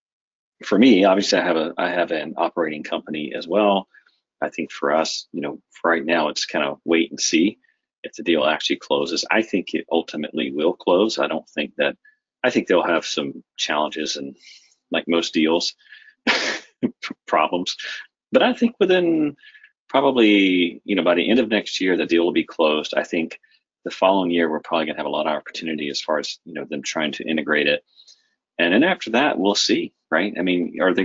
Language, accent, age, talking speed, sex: English, American, 40-59, 205 wpm, male